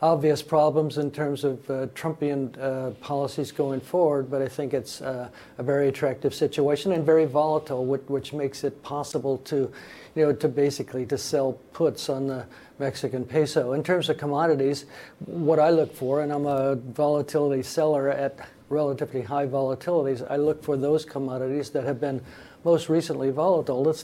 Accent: American